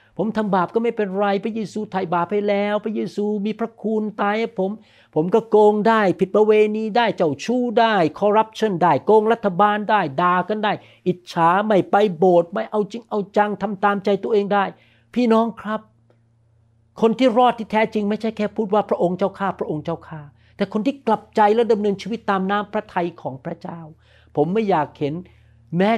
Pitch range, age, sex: 145-210 Hz, 60-79, male